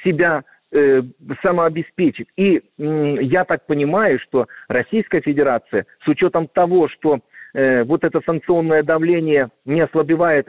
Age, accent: 50-69, native